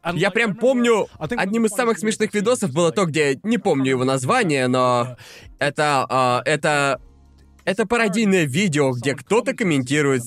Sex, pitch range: male, 155-255 Hz